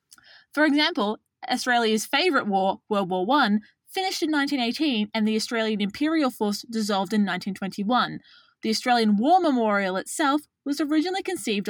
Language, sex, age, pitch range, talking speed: English, female, 20-39, 205-285 Hz, 140 wpm